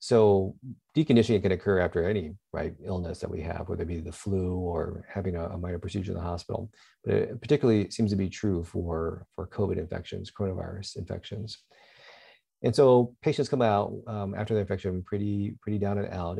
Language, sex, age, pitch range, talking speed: English, male, 40-59, 90-105 Hz, 185 wpm